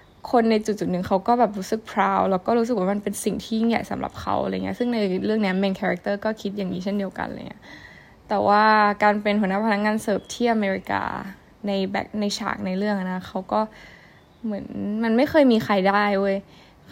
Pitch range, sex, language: 190-230 Hz, female, Thai